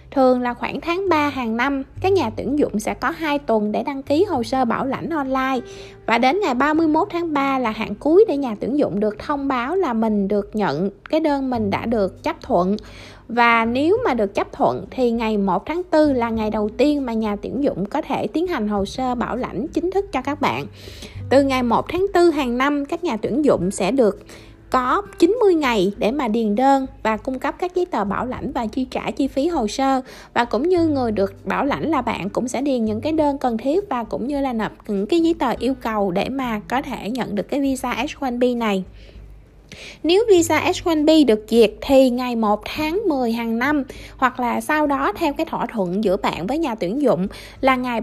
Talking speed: 235 wpm